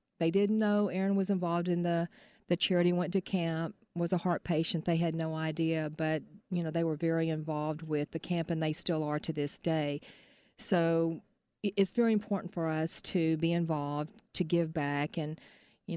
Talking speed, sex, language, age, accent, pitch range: 195 wpm, female, English, 40-59, American, 155-180 Hz